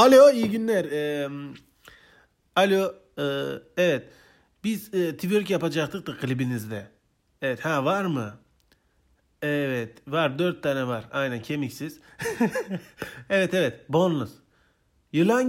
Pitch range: 115-170 Hz